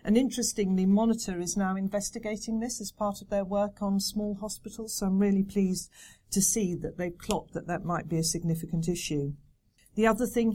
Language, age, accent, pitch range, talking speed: English, 50-69, British, 185-230 Hz, 195 wpm